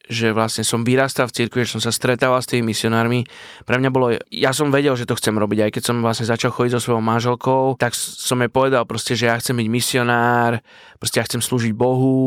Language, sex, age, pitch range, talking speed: Slovak, male, 20-39, 115-135 Hz, 230 wpm